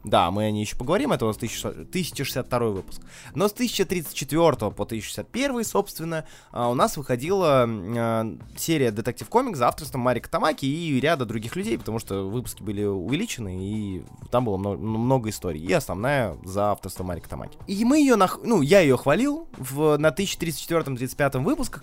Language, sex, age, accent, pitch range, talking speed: Russian, male, 20-39, native, 110-165 Hz, 165 wpm